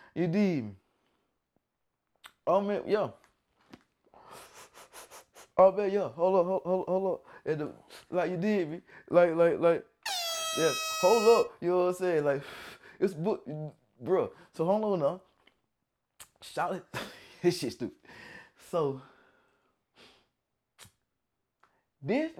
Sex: male